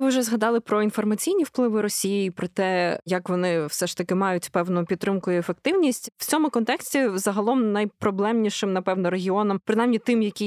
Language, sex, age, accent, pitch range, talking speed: Ukrainian, female, 20-39, native, 190-225 Hz, 165 wpm